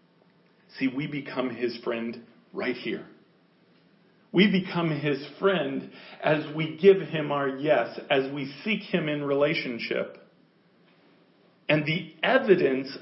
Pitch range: 145-190 Hz